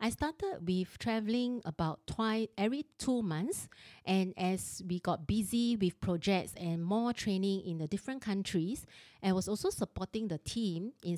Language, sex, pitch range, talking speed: English, female, 165-200 Hz, 160 wpm